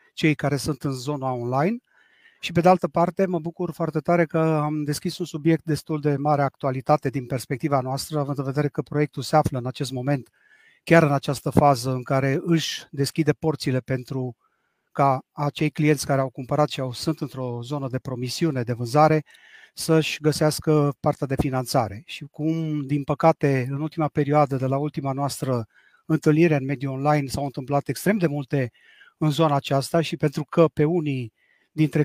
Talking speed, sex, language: 180 wpm, male, Romanian